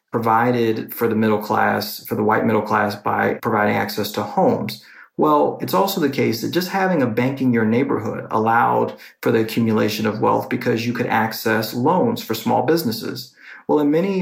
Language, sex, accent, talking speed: English, male, American, 190 wpm